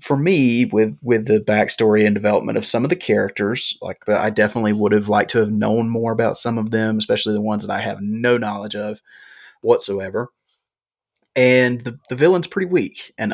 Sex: male